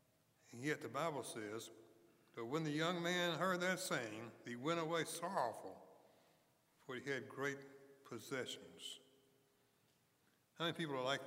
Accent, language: American, English